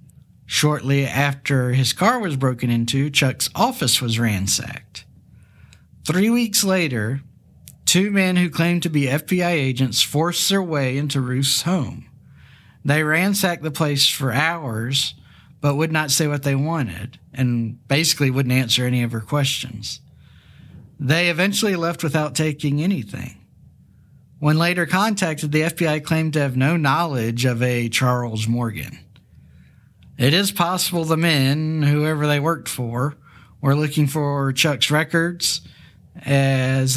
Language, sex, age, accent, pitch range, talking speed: English, male, 50-69, American, 130-160 Hz, 135 wpm